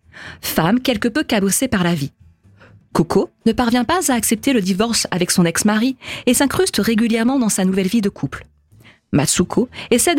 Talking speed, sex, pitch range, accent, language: 170 wpm, female, 175-250 Hz, French, French